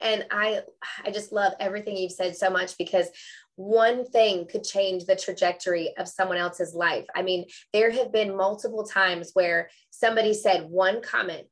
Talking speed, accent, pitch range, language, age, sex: 170 wpm, American, 180-210 Hz, English, 20-39, female